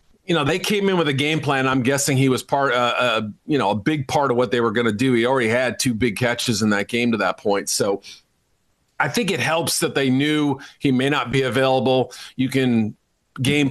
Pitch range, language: 125-145 Hz, English